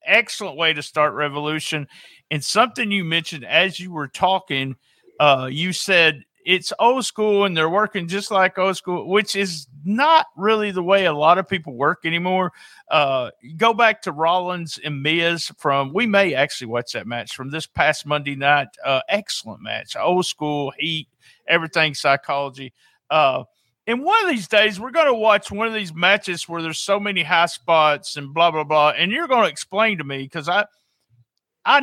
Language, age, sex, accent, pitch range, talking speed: English, 50-69, male, American, 150-210 Hz, 185 wpm